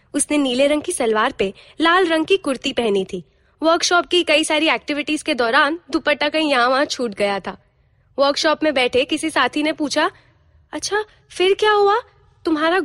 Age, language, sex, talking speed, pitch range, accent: 20-39, Hindi, female, 180 wpm, 265-345 Hz, native